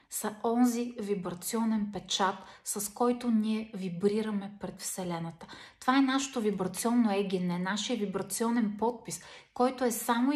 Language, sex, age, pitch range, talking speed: Bulgarian, female, 30-49, 195-240 Hz, 125 wpm